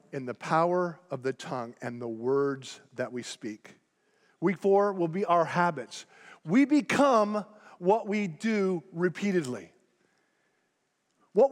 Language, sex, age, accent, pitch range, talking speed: English, male, 40-59, American, 170-220 Hz, 130 wpm